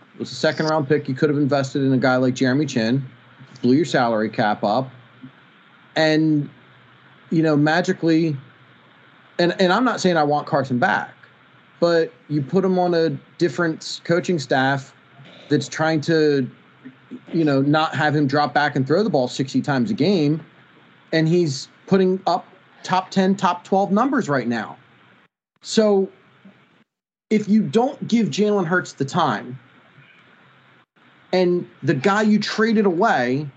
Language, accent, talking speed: English, American, 155 wpm